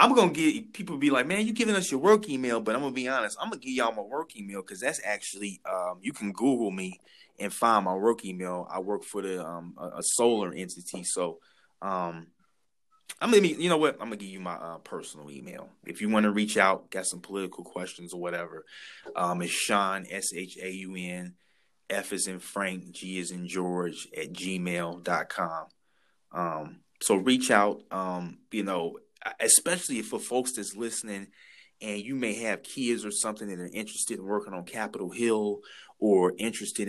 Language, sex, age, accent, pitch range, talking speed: English, male, 20-39, American, 90-115 Hz, 200 wpm